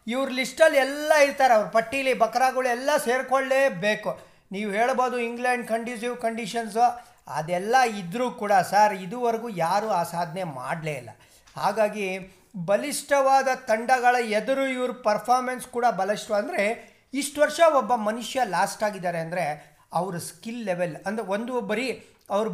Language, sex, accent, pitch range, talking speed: Kannada, male, native, 195-255 Hz, 120 wpm